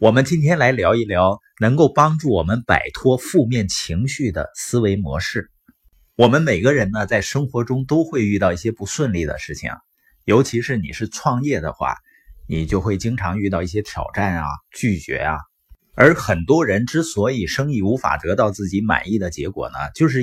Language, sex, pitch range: Chinese, male, 90-125 Hz